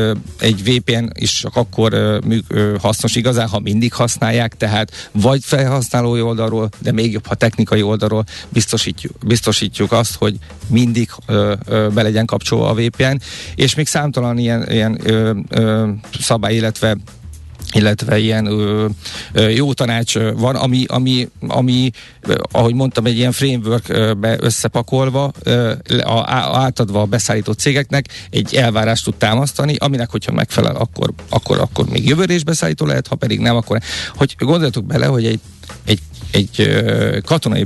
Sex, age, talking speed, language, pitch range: male, 50-69, 125 wpm, Hungarian, 110-125 Hz